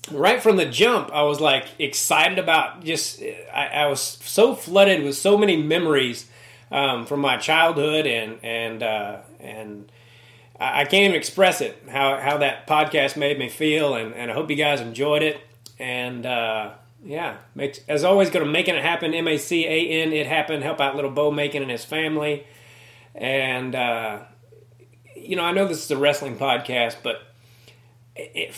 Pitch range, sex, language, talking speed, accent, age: 120-155 Hz, male, English, 175 wpm, American, 30-49